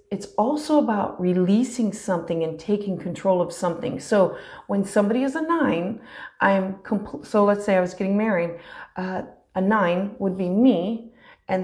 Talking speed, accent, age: 165 wpm, American, 30-49